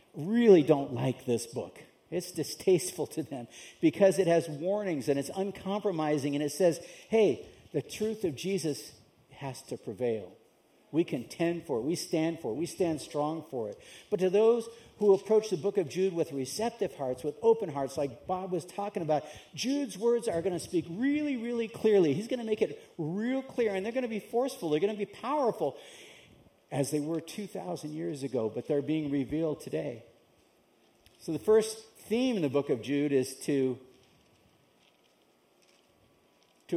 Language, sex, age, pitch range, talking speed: English, male, 50-69, 145-210 Hz, 180 wpm